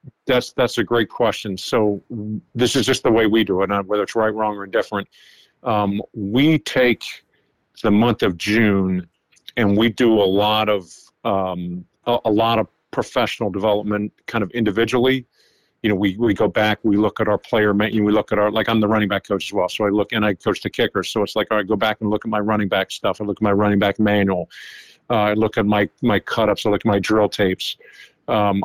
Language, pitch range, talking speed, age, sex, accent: English, 100-110 Hz, 230 wpm, 50-69, male, American